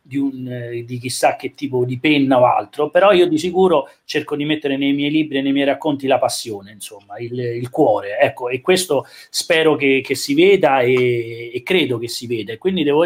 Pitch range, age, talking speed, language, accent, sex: 130-155 Hz, 30-49, 220 wpm, Italian, native, male